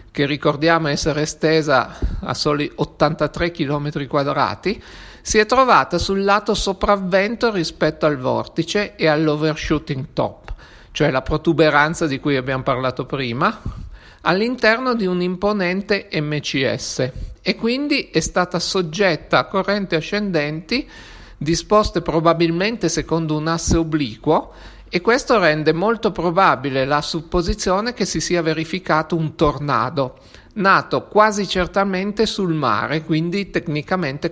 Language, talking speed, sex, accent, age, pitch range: Italian, 120 wpm, male, native, 50-69, 150-200 Hz